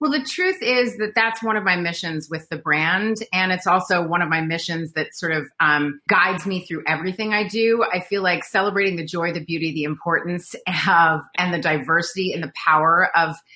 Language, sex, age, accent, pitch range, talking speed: English, female, 30-49, American, 170-210 Hz, 215 wpm